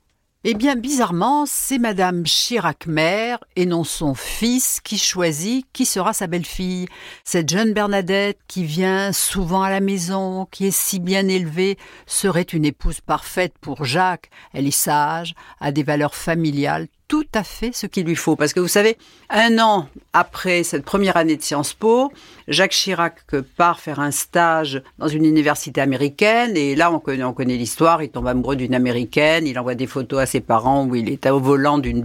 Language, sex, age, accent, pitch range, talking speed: French, female, 60-79, French, 155-220 Hz, 185 wpm